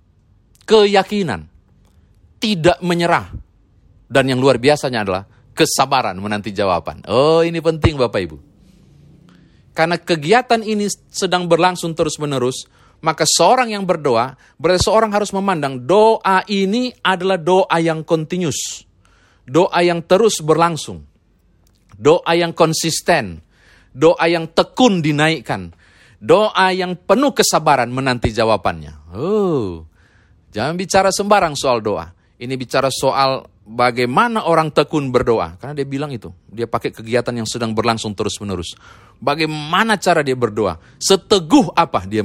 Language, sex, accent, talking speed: Indonesian, male, native, 120 wpm